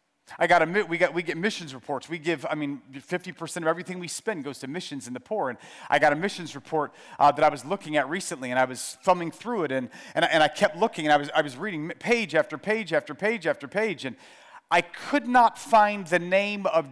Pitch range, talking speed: 170-240 Hz, 255 wpm